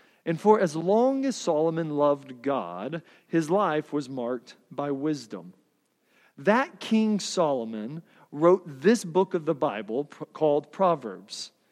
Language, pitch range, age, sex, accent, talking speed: English, 170-235 Hz, 40-59, male, American, 130 wpm